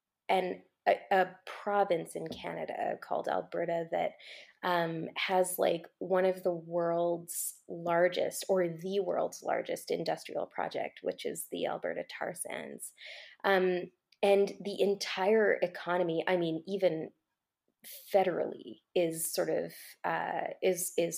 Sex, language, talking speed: female, English, 110 wpm